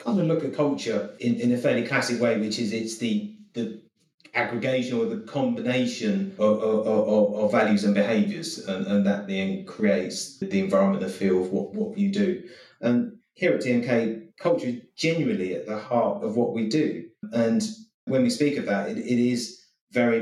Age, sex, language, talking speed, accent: 30-49, male, English, 195 wpm, British